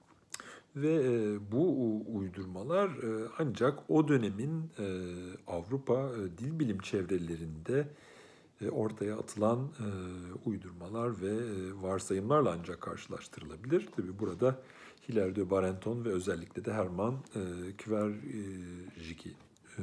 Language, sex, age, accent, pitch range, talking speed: Turkish, male, 50-69, native, 90-125 Hz, 80 wpm